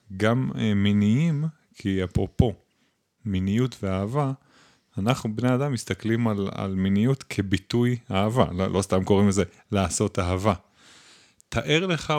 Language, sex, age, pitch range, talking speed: Hebrew, male, 30-49, 100-125 Hz, 120 wpm